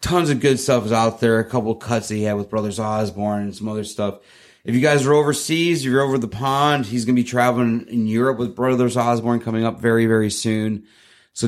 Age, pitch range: 30-49, 110-135 Hz